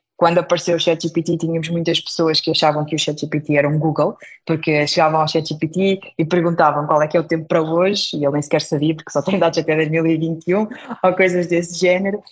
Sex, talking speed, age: female, 215 wpm, 20-39